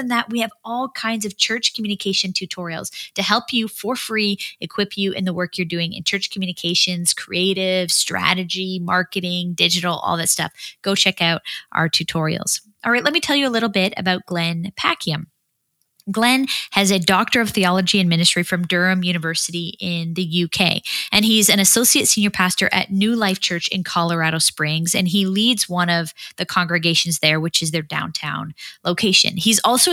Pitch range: 175-215 Hz